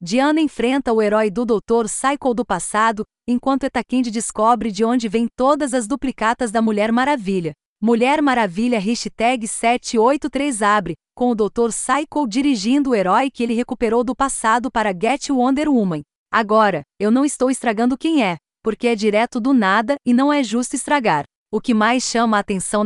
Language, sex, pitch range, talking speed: Portuguese, female, 215-265 Hz, 170 wpm